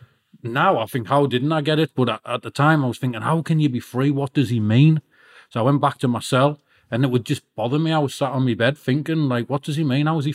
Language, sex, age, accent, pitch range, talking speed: English, male, 40-59, British, 105-135 Hz, 300 wpm